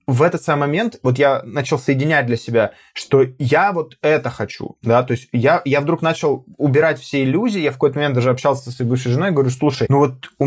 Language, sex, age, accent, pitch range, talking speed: Russian, male, 20-39, native, 125-155 Hz, 230 wpm